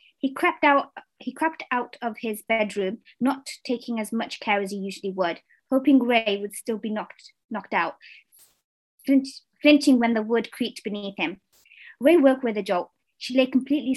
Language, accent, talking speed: English, British, 170 wpm